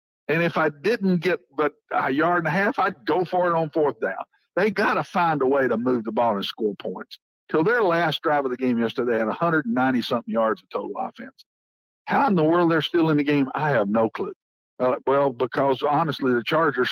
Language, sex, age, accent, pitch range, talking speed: English, male, 60-79, American, 130-175 Hz, 230 wpm